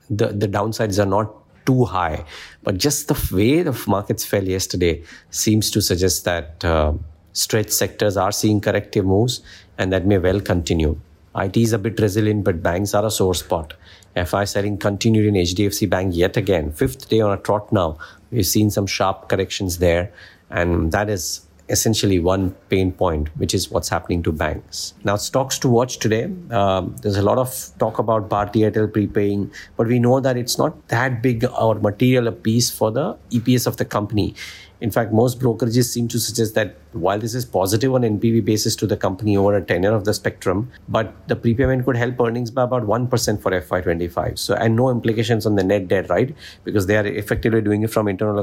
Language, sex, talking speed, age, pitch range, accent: English, male, 200 wpm, 50-69, 95-115 Hz, Indian